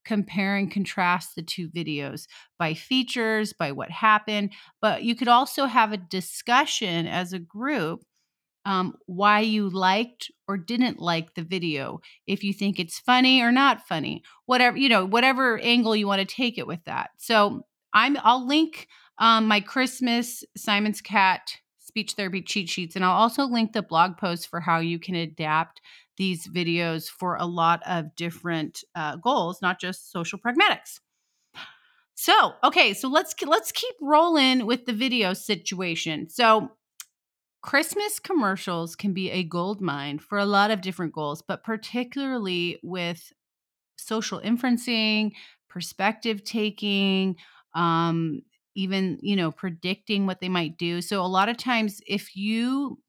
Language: English